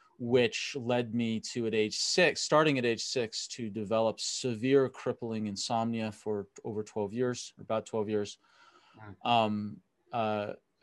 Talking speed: 140 wpm